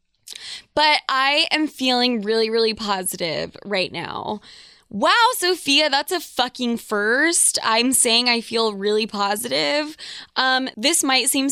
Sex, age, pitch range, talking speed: female, 20-39, 215-270 Hz, 130 wpm